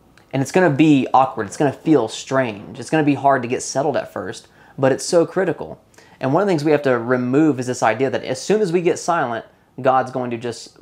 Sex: male